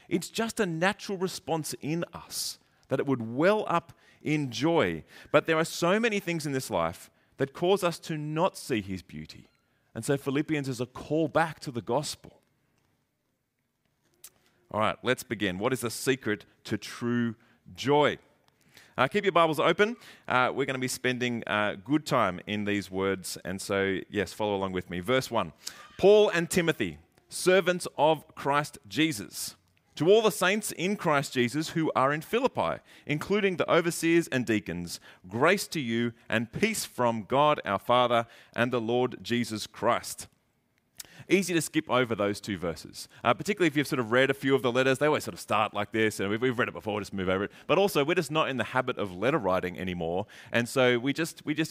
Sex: male